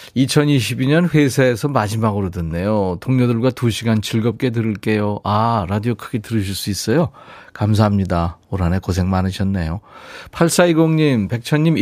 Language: Korean